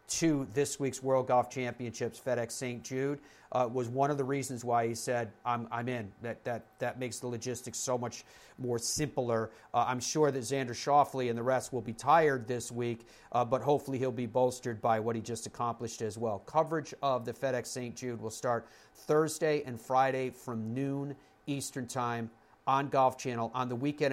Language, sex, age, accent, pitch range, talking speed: English, male, 40-59, American, 120-135 Hz, 195 wpm